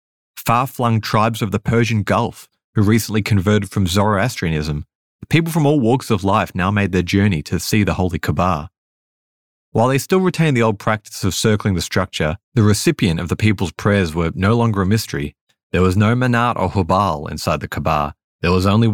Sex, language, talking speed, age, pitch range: male, English, 195 wpm, 30-49, 90-115 Hz